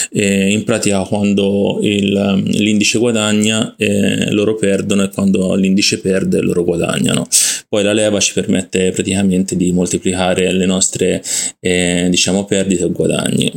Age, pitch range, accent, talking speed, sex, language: 20-39, 95-105 Hz, native, 125 wpm, male, Italian